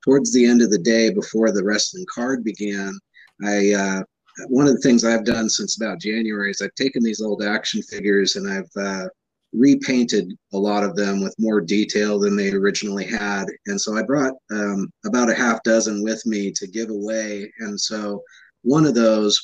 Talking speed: 195 wpm